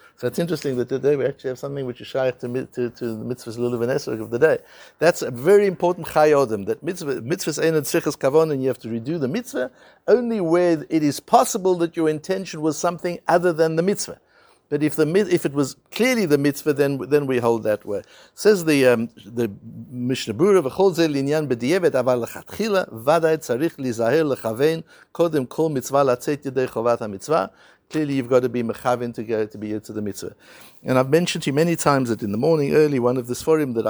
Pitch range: 120-160 Hz